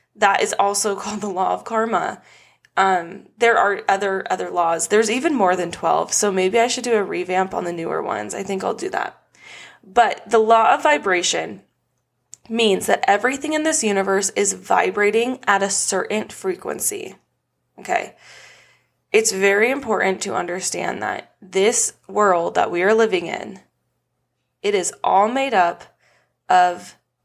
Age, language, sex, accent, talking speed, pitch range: 20-39, English, female, American, 160 wpm, 190-240 Hz